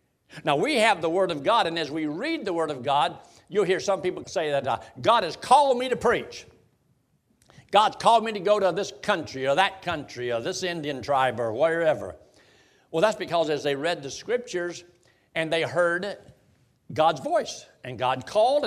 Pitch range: 125-175 Hz